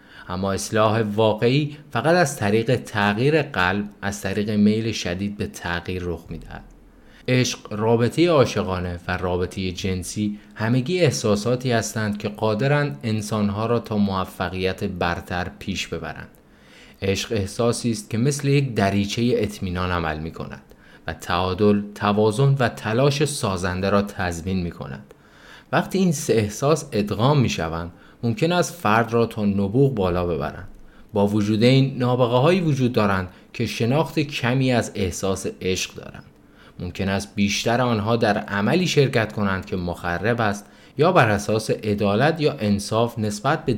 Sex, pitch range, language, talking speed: male, 95-125 Hz, Persian, 145 wpm